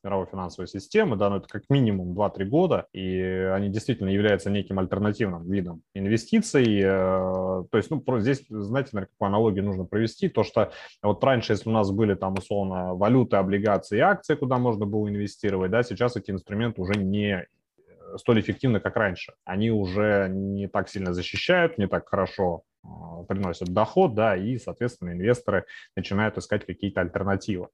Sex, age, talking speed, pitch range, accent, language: male, 20-39, 160 wpm, 95-110 Hz, native, Russian